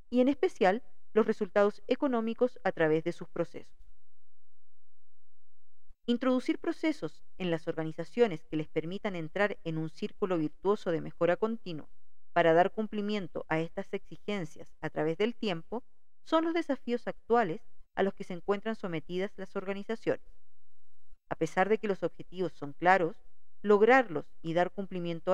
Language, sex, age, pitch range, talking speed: English, female, 40-59, 165-230 Hz, 145 wpm